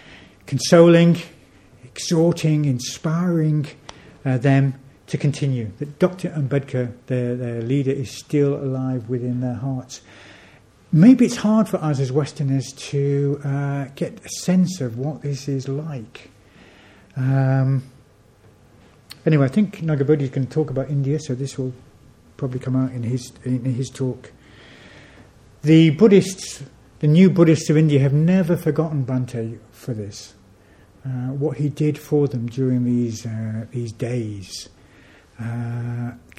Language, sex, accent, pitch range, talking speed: English, male, British, 125-150 Hz, 135 wpm